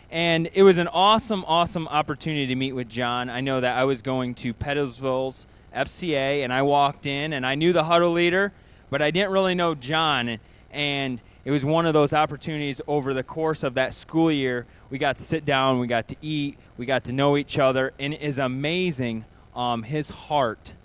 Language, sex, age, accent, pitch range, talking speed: English, male, 20-39, American, 125-160 Hz, 205 wpm